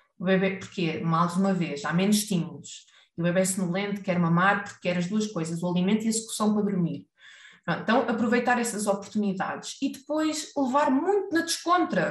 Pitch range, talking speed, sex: 190-275 Hz, 200 wpm, female